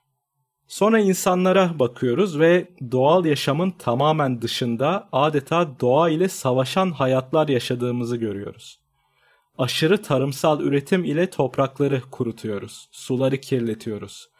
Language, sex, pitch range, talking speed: Turkish, male, 125-165 Hz, 95 wpm